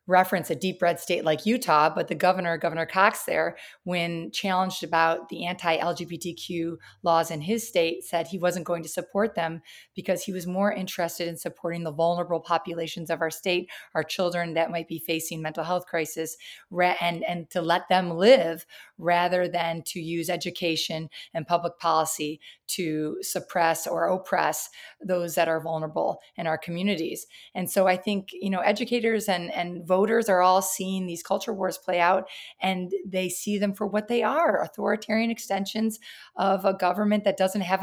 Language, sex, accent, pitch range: English, female, American, 170-195 Hz